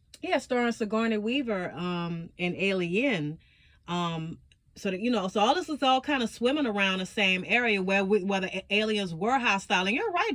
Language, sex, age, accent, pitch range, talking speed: English, female, 30-49, American, 190-250 Hz, 195 wpm